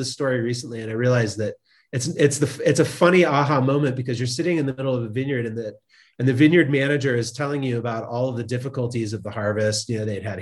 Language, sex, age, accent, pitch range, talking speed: English, male, 30-49, American, 115-140 Hz, 255 wpm